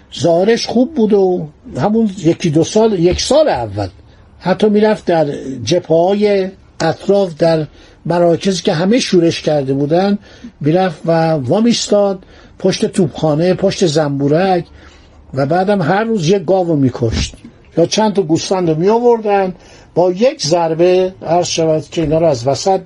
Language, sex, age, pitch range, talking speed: Persian, male, 60-79, 155-200 Hz, 140 wpm